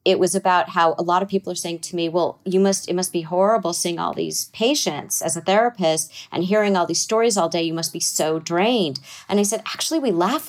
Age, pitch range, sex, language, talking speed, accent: 40-59, 165-195 Hz, female, English, 250 wpm, American